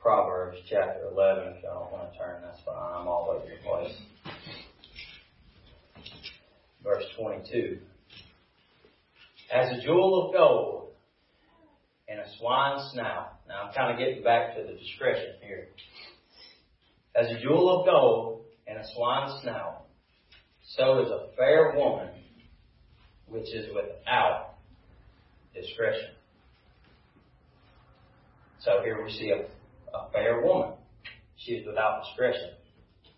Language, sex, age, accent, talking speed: English, male, 40-59, American, 120 wpm